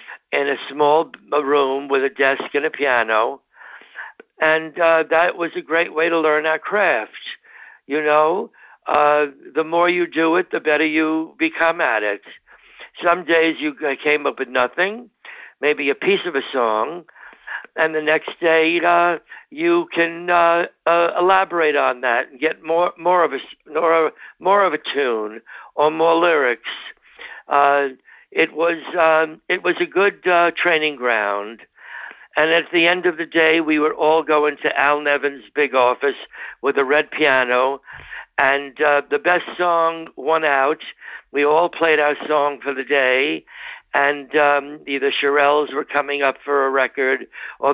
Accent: American